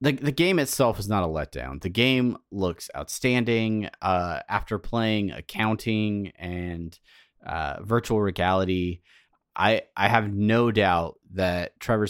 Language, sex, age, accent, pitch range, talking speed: English, male, 30-49, American, 85-110 Hz, 135 wpm